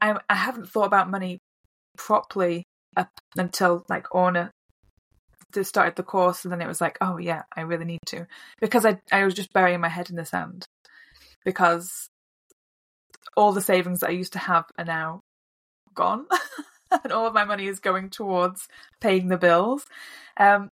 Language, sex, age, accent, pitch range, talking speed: English, female, 20-39, British, 175-205 Hz, 175 wpm